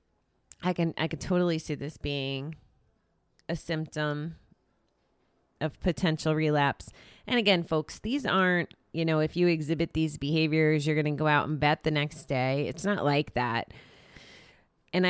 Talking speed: 155 wpm